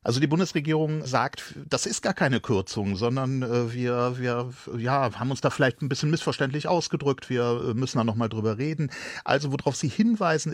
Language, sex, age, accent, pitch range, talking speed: German, male, 40-59, German, 110-150 Hz, 170 wpm